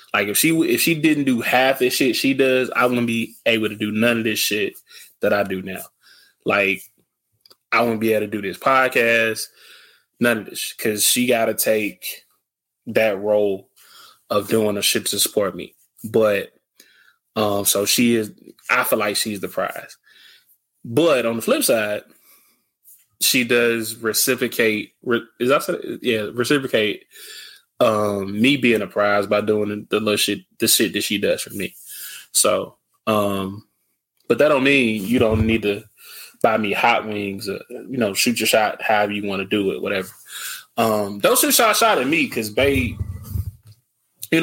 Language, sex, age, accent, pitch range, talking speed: English, male, 20-39, American, 105-130 Hz, 175 wpm